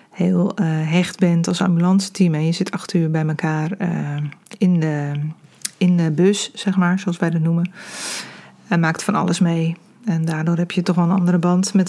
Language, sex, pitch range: Dutch, female, 170-200 Hz